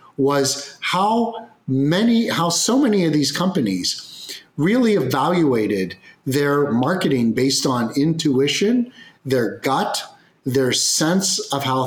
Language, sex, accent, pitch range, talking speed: English, male, American, 125-180 Hz, 110 wpm